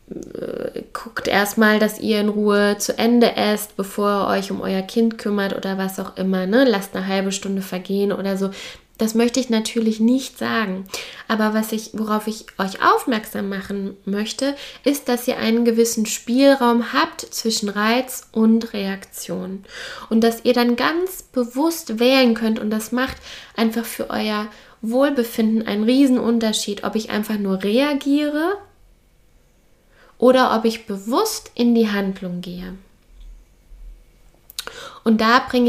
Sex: female